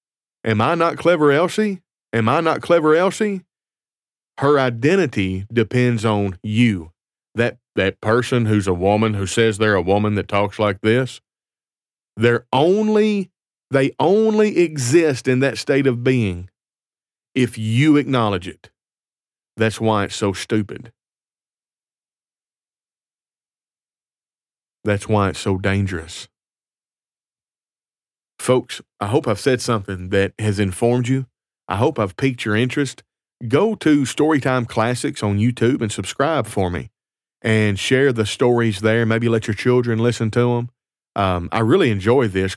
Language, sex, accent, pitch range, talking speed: English, male, American, 105-130 Hz, 135 wpm